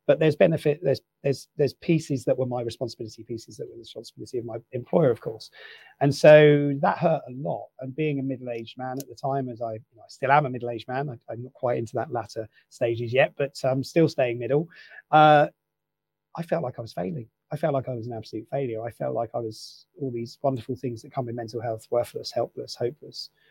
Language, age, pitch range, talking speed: English, 30-49, 120-145 Hz, 240 wpm